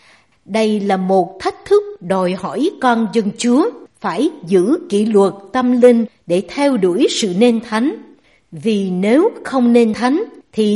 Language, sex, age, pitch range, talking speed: Vietnamese, female, 60-79, 200-280 Hz, 155 wpm